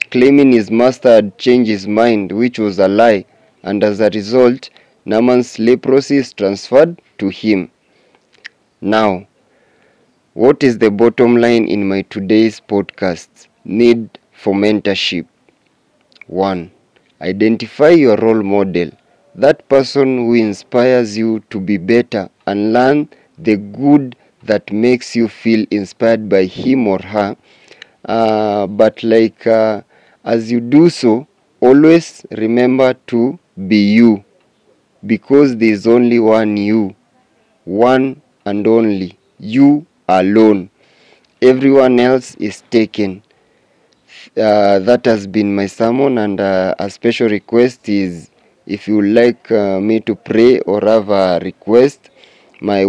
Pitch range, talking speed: 105-125 Hz, 125 wpm